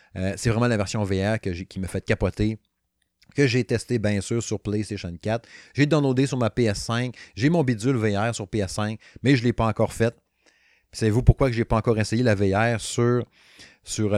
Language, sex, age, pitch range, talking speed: French, male, 30-49, 100-125 Hz, 210 wpm